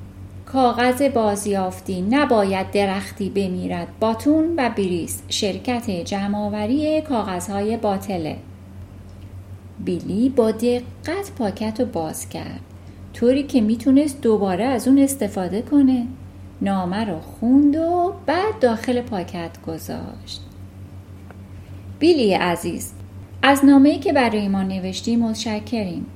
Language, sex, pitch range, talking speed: Persian, female, 175-255 Hz, 100 wpm